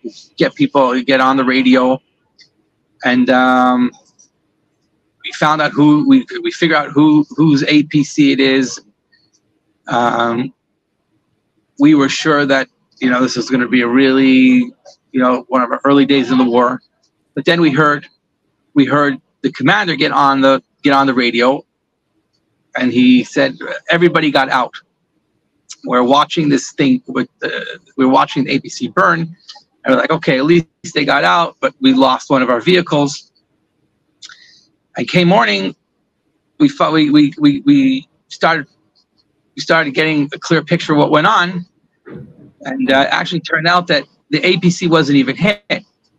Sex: male